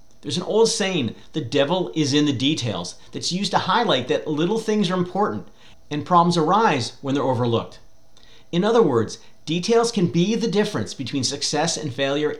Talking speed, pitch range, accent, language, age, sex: 180 wpm, 125-175 Hz, American, English, 40-59, male